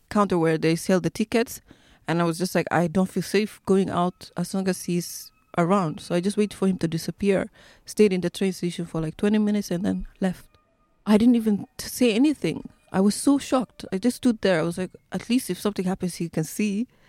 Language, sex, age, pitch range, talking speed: English, female, 30-49, 165-210 Hz, 230 wpm